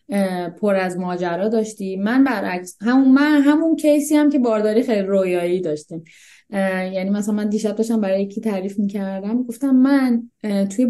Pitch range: 195-260 Hz